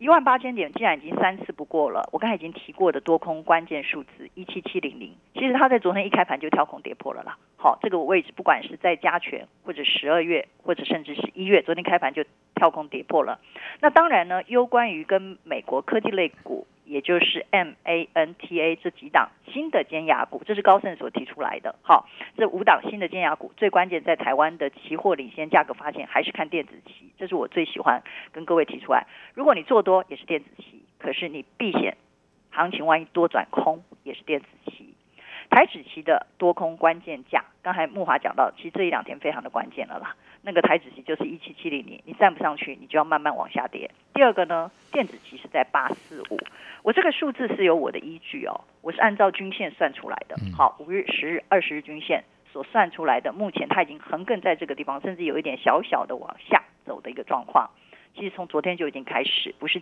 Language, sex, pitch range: Chinese, female, 160-220 Hz